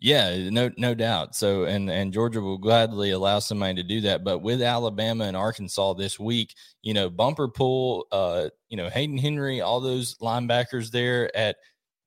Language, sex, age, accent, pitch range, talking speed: English, male, 20-39, American, 100-115 Hz, 180 wpm